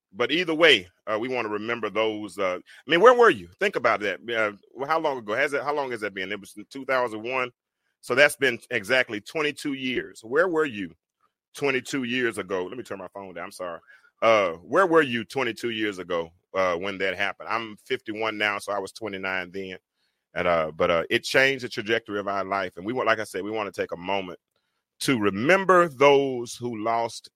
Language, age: English, 30-49